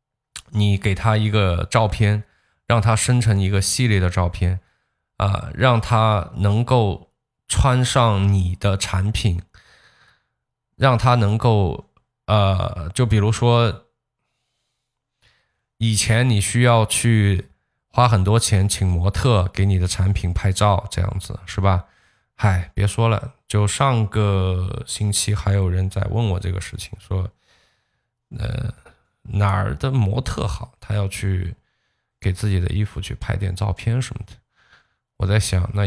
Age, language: 20-39, Chinese